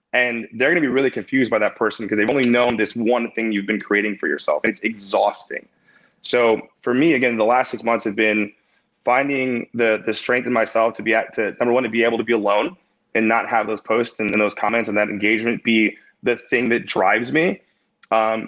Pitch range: 110-125 Hz